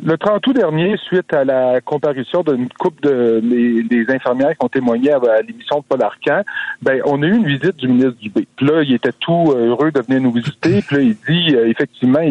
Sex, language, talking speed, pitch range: male, French, 215 wpm, 125-155 Hz